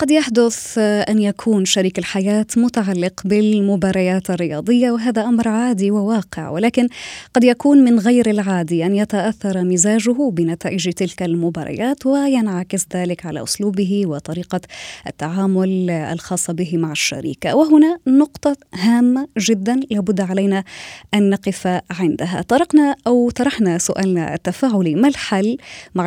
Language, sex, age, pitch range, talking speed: Arabic, female, 20-39, 175-230 Hz, 120 wpm